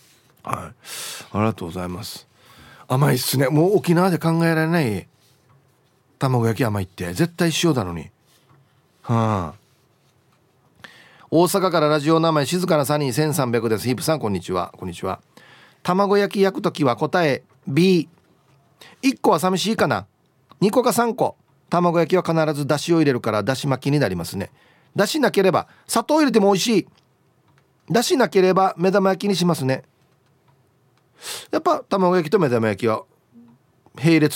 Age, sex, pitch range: 40-59, male, 125-175 Hz